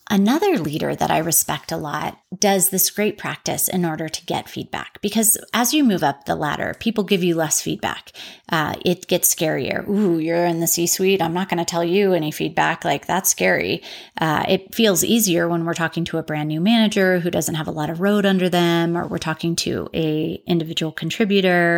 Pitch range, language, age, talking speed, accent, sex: 165-195 Hz, English, 30-49, 210 wpm, American, female